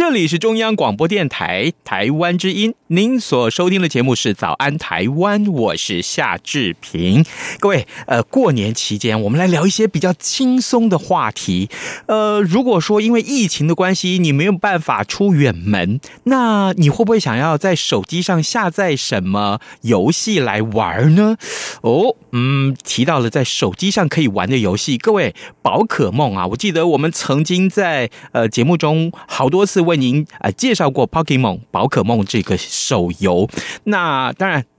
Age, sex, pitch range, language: 30-49, male, 120-195 Hz, Chinese